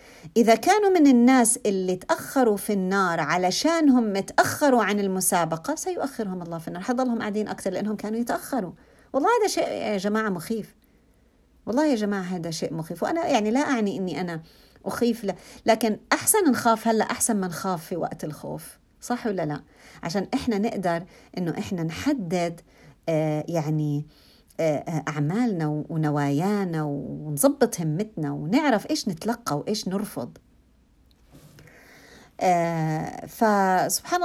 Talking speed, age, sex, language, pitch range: 125 wpm, 50-69, female, Arabic, 175-245 Hz